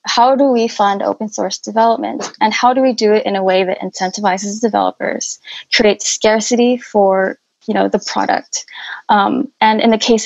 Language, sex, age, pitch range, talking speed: English, female, 10-29, 210-245 Hz, 180 wpm